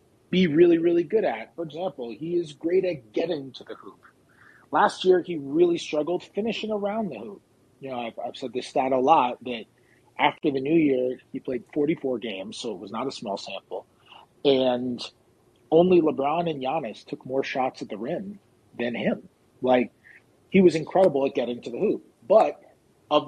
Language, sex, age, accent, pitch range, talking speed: English, male, 30-49, American, 120-170 Hz, 190 wpm